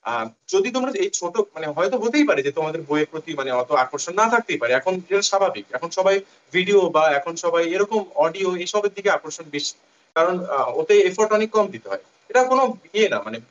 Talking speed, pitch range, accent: 60 wpm, 160-250 Hz, native